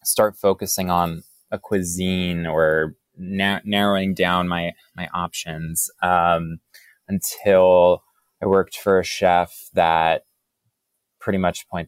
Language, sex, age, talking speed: English, male, 20-39, 115 wpm